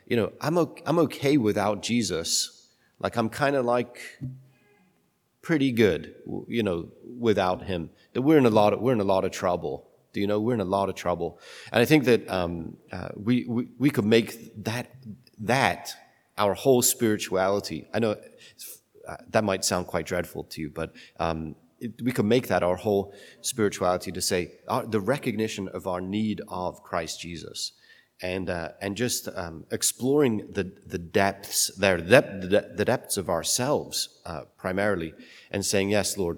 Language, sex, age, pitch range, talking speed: English, male, 30-49, 95-120 Hz, 180 wpm